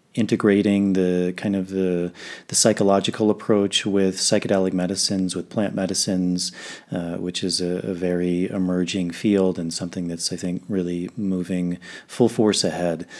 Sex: male